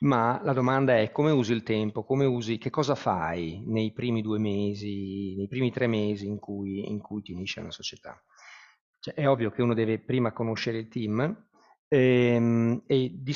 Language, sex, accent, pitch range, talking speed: Italian, male, native, 110-130 Hz, 190 wpm